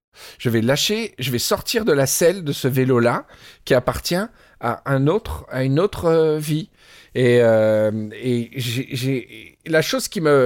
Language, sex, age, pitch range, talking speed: French, male, 50-69, 120-150 Hz, 170 wpm